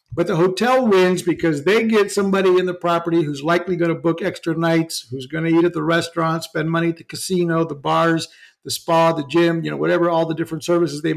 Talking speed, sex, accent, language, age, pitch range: 235 wpm, male, American, English, 60-79, 155-180 Hz